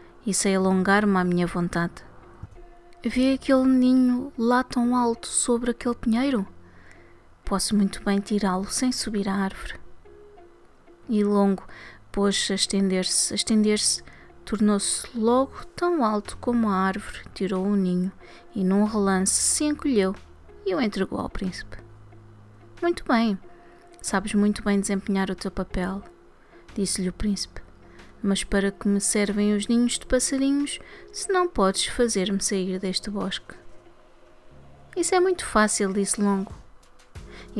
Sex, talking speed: female, 135 wpm